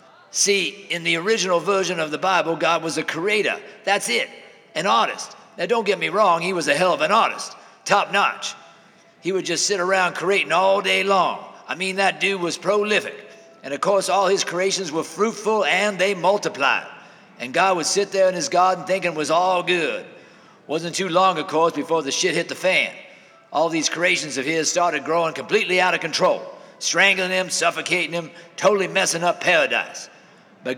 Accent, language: American, English